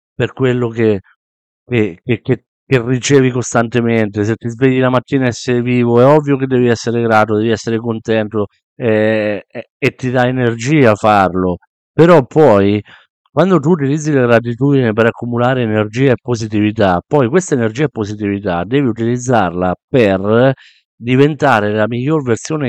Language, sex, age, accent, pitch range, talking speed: Italian, male, 50-69, native, 105-135 Hz, 145 wpm